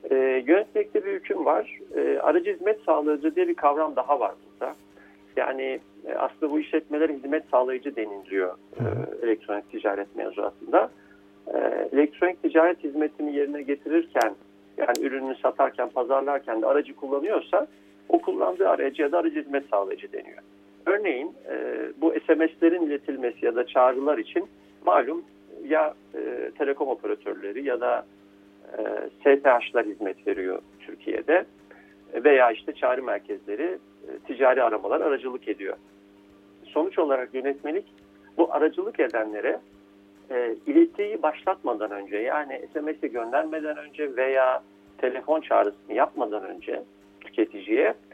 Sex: male